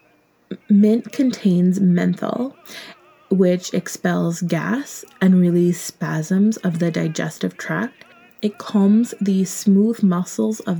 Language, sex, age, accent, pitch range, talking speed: English, female, 20-39, American, 170-205 Hz, 105 wpm